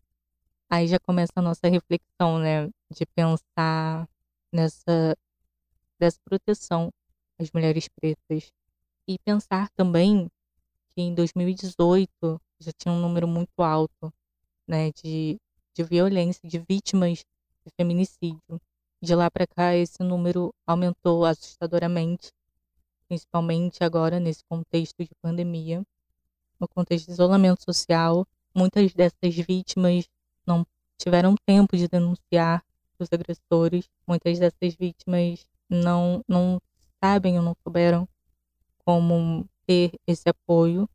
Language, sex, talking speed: Portuguese, female, 115 wpm